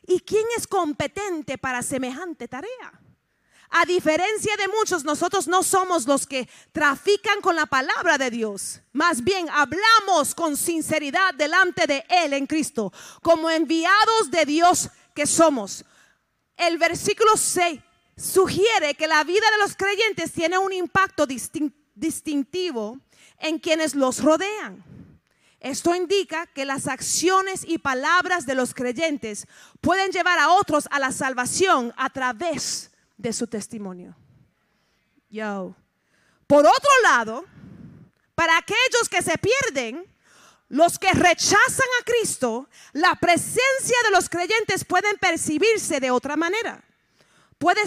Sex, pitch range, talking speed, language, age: female, 270-370 Hz, 130 wpm, English, 40-59